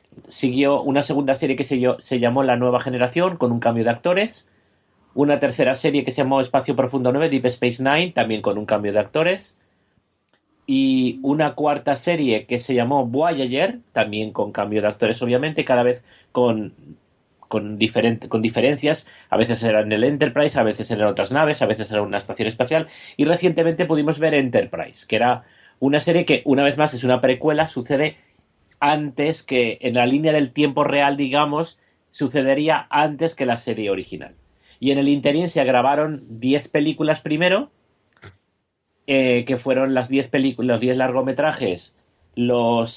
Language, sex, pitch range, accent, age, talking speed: Spanish, male, 120-150 Hz, Spanish, 30-49, 170 wpm